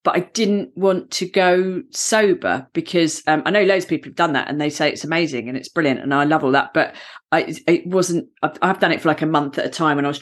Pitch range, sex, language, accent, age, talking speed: 150-185 Hz, female, English, British, 40-59, 280 wpm